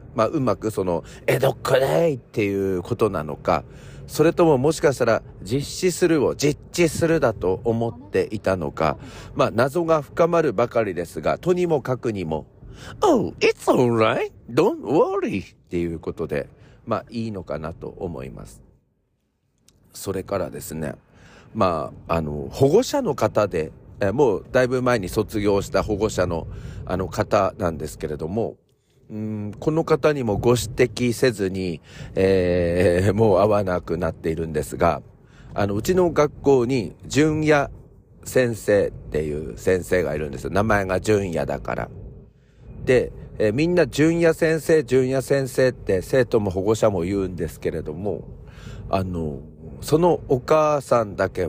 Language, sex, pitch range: Japanese, male, 90-140 Hz